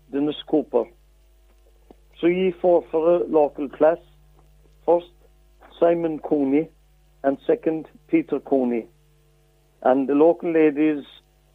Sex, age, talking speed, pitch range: male, 60-79, 105 wpm, 135-155 Hz